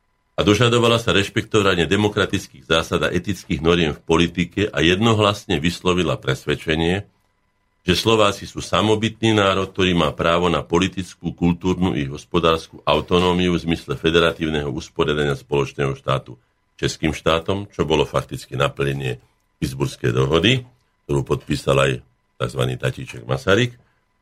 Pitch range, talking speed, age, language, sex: 75-100 Hz, 120 wpm, 50-69, Slovak, male